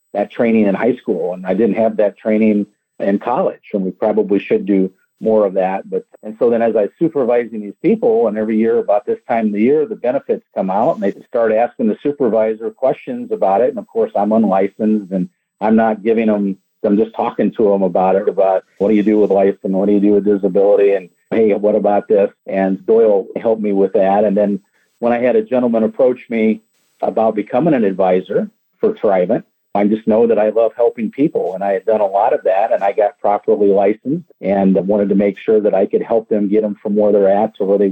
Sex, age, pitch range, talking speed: male, 50-69, 100-110 Hz, 235 wpm